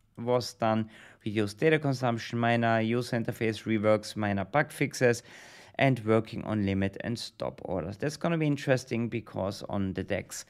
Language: English